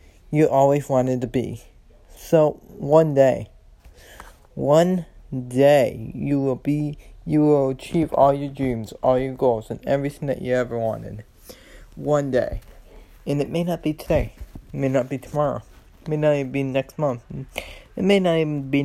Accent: American